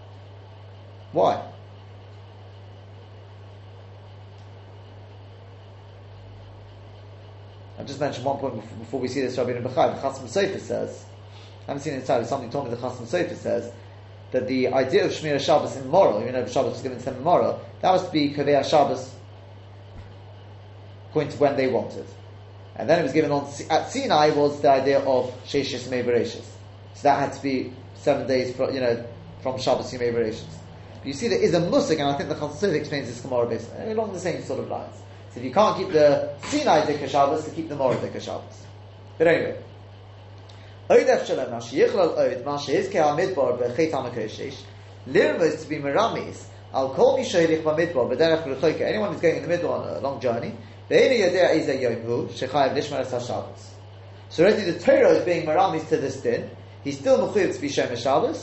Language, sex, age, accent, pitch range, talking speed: English, male, 30-49, British, 100-145 Hz, 145 wpm